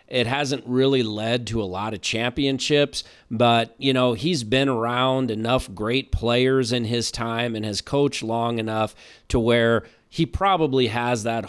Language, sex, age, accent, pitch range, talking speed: English, male, 40-59, American, 115-135 Hz, 165 wpm